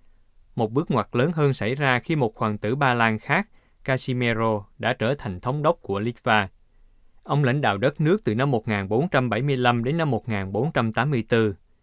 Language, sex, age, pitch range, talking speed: Vietnamese, male, 20-39, 105-135 Hz, 165 wpm